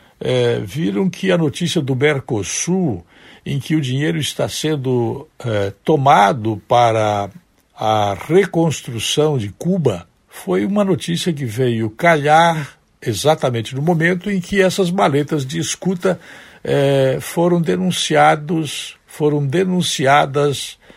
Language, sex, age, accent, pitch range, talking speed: Portuguese, male, 60-79, Brazilian, 115-165 Hz, 115 wpm